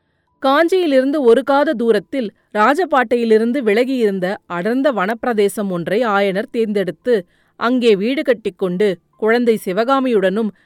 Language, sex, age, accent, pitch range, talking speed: Tamil, female, 30-49, native, 200-260 Hz, 90 wpm